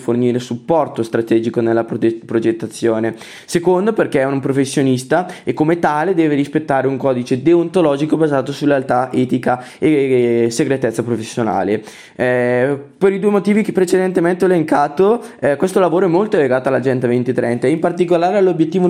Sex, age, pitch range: male, 20-39, 130-175 Hz